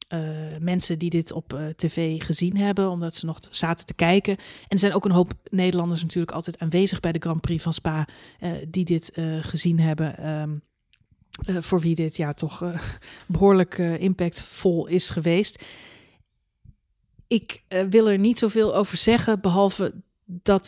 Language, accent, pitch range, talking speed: Dutch, Dutch, 165-195 Hz, 170 wpm